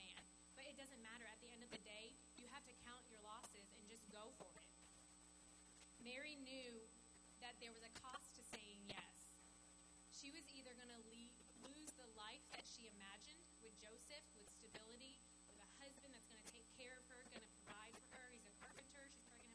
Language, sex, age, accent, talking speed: English, female, 20-39, American, 200 wpm